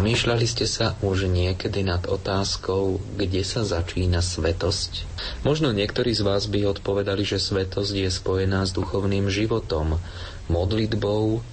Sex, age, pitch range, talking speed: male, 30-49, 90-105 Hz, 130 wpm